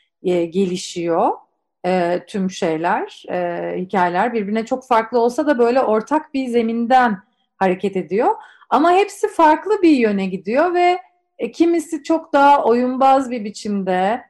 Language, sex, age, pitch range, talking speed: Turkish, female, 40-59, 190-240 Hz, 120 wpm